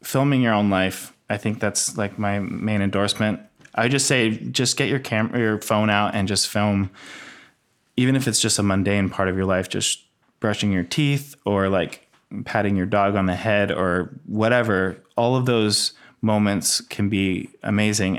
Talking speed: 180 wpm